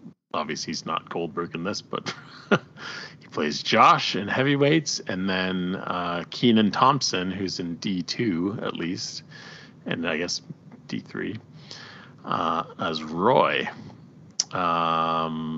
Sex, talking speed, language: male, 115 wpm, English